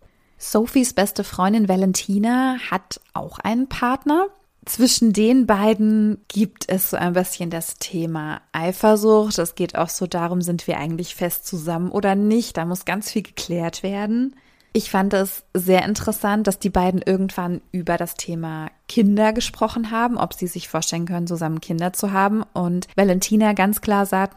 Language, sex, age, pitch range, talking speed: German, female, 20-39, 175-210 Hz, 165 wpm